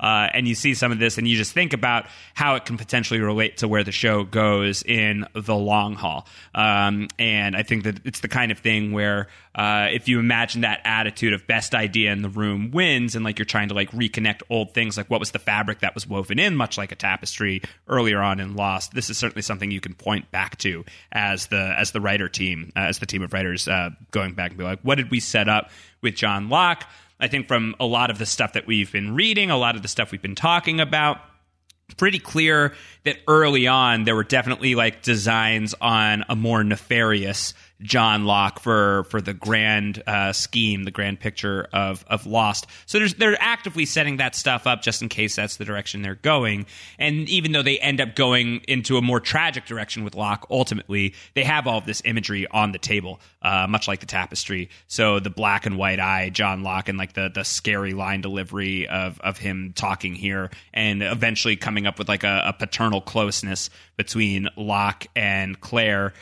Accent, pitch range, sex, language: American, 100-120 Hz, male, English